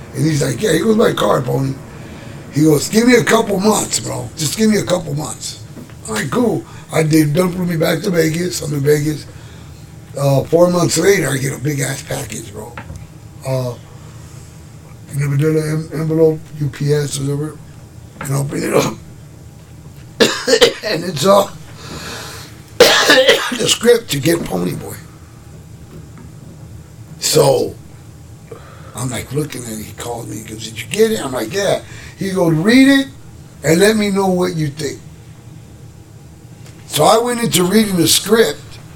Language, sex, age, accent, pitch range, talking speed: English, male, 60-79, American, 135-180 Hz, 160 wpm